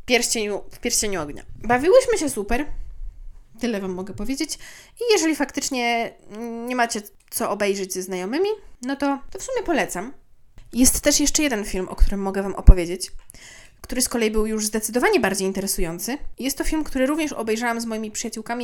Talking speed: 170 wpm